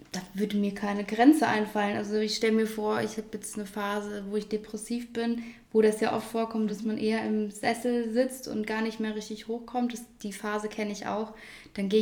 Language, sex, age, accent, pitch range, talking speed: English, female, 20-39, German, 205-225 Hz, 220 wpm